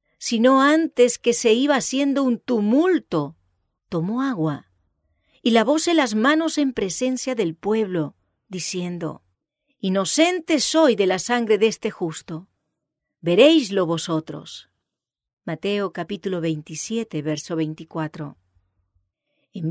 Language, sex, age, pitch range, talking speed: English, female, 40-59, 170-265 Hz, 105 wpm